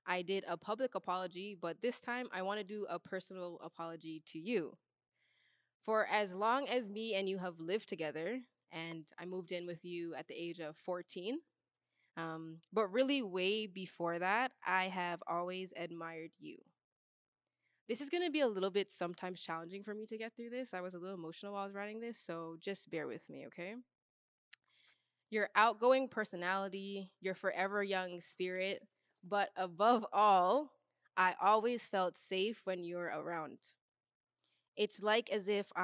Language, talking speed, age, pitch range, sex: English, 170 wpm, 10-29, 175-210 Hz, female